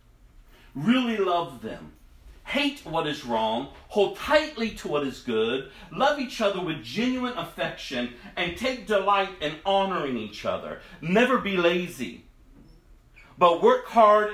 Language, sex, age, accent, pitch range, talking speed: English, male, 50-69, American, 155-220 Hz, 135 wpm